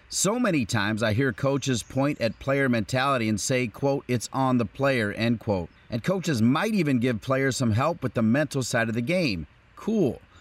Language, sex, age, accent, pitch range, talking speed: English, male, 40-59, American, 110-145 Hz, 200 wpm